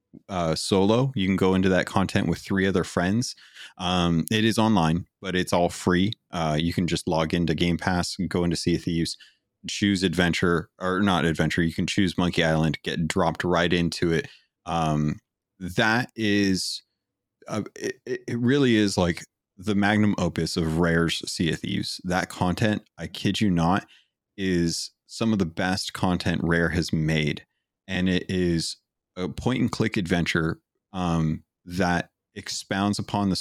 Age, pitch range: 30-49, 85-100 Hz